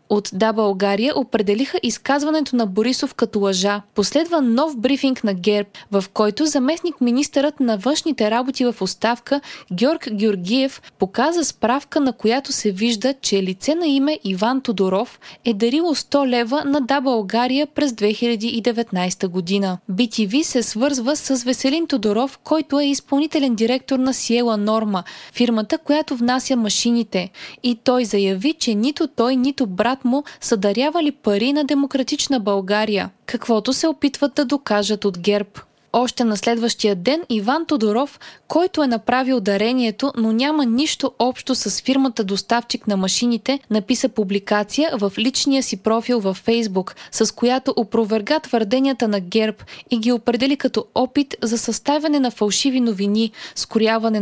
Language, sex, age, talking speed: Bulgarian, female, 20-39, 145 wpm